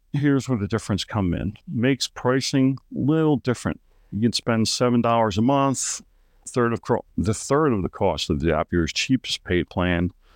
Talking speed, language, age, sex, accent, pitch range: 175 wpm, English, 50-69, male, American, 95-130 Hz